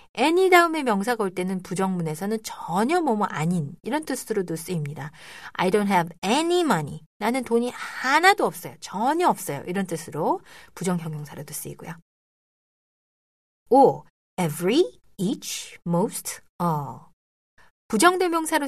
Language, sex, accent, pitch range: Korean, female, native, 170-245 Hz